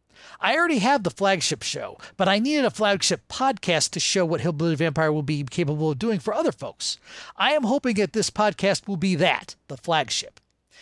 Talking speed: 200 wpm